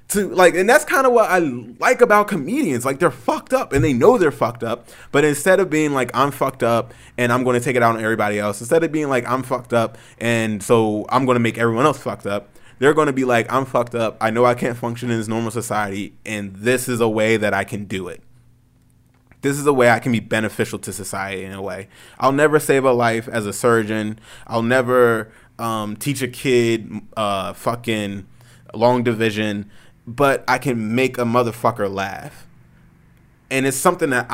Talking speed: 220 wpm